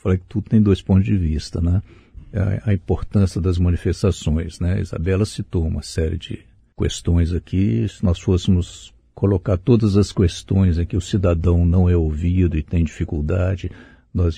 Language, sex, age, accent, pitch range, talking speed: Portuguese, male, 60-79, Brazilian, 90-105 Hz, 165 wpm